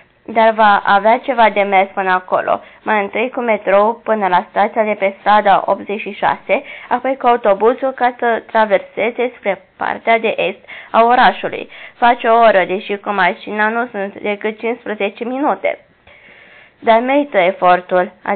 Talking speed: 150 wpm